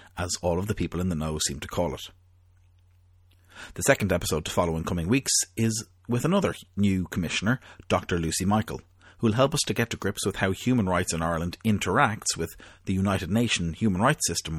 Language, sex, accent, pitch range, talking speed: English, male, Irish, 85-110 Hz, 205 wpm